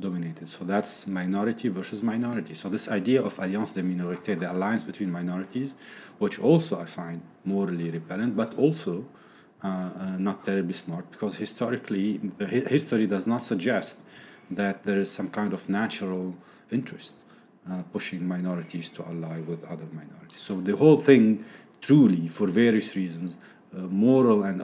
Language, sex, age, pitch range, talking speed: English, male, 40-59, 90-115 Hz, 160 wpm